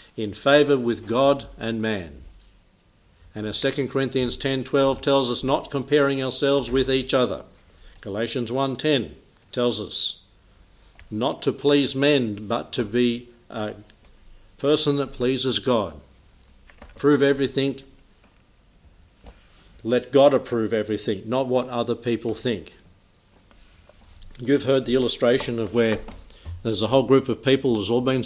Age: 50-69